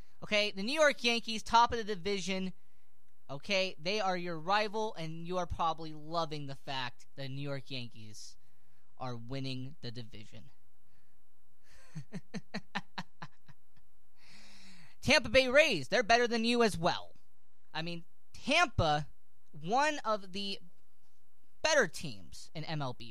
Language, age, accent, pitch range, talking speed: English, 20-39, American, 140-225 Hz, 125 wpm